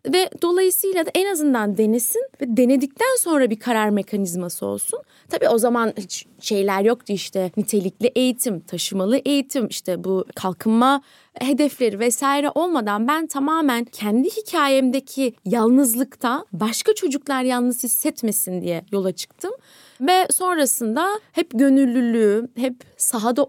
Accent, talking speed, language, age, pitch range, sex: native, 125 wpm, Turkish, 20-39, 215-280 Hz, female